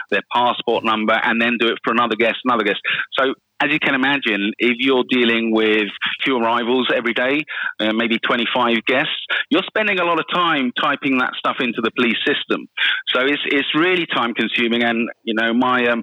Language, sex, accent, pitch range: English, male, British, 110-130 Hz